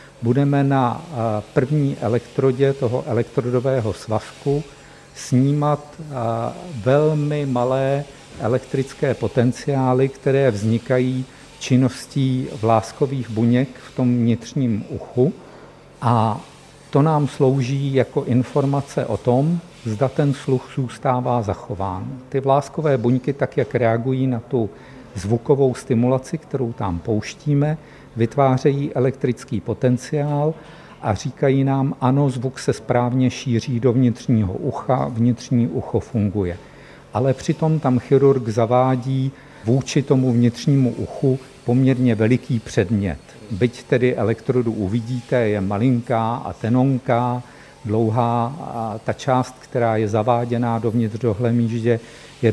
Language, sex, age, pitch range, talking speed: Czech, male, 50-69, 115-135 Hz, 105 wpm